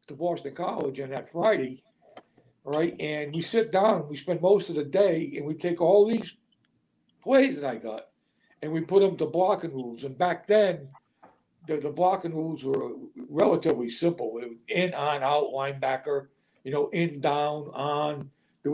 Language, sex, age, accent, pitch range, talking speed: English, male, 60-79, American, 145-185 Hz, 180 wpm